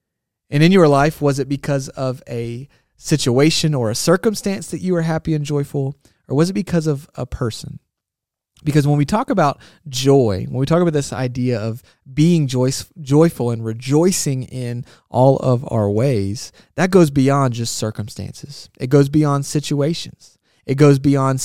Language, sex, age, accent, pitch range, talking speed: English, male, 30-49, American, 125-155 Hz, 170 wpm